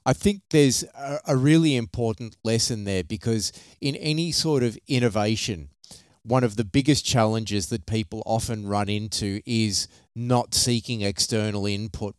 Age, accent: 30-49, Australian